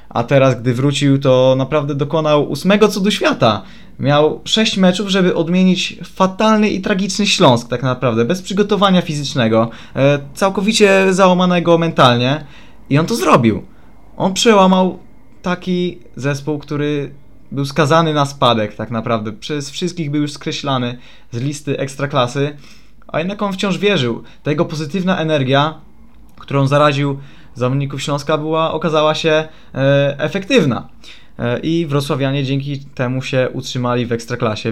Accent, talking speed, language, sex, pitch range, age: native, 130 wpm, Polish, male, 125-155 Hz, 20-39